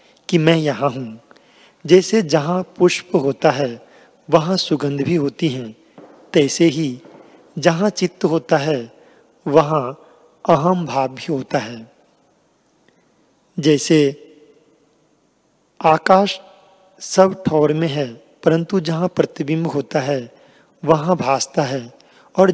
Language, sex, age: Hindi, male, 40-59